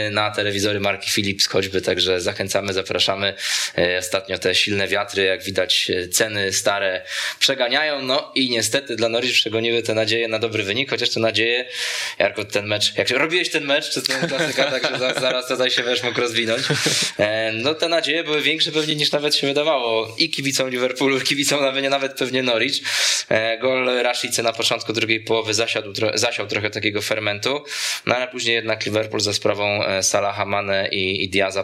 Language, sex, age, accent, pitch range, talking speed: Polish, male, 20-39, native, 95-125 Hz, 170 wpm